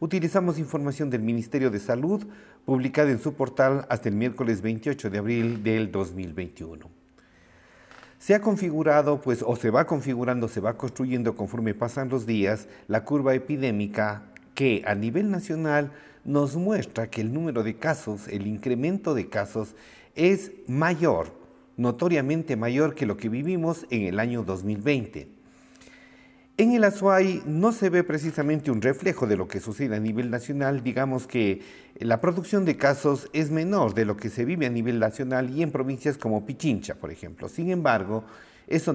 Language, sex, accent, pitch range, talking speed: Spanish, male, Mexican, 110-155 Hz, 160 wpm